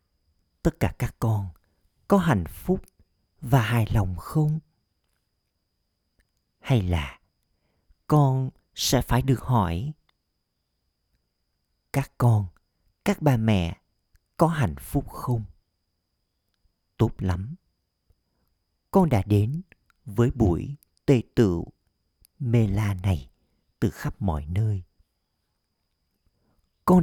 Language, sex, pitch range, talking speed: Vietnamese, male, 85-125 Hz, 100 wpm